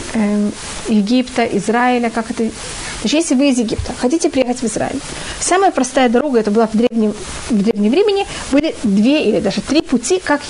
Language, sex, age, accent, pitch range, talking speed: Russian, female, 30-49, native, 225-290 Hz, 170 wpm